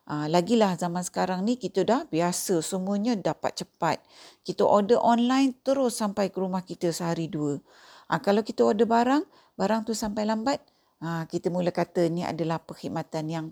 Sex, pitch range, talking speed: female, 165-235 Hz, 170 wpm